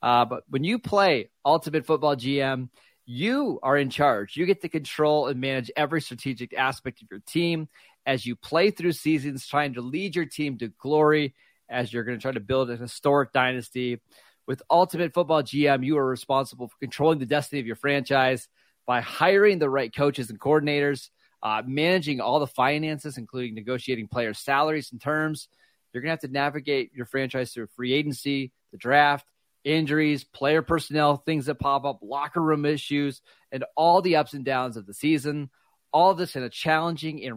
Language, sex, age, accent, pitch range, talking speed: English, male, 30-49, American, 125-150 Hz, 185 wpm